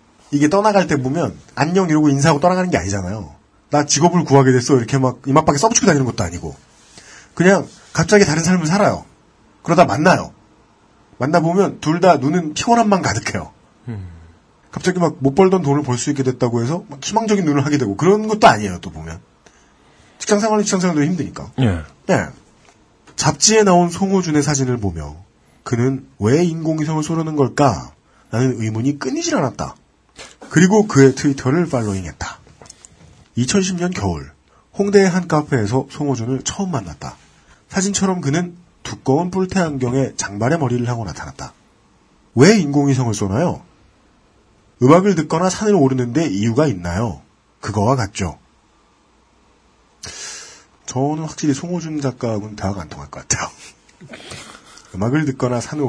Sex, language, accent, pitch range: male, Korean, native, 110-175 Hz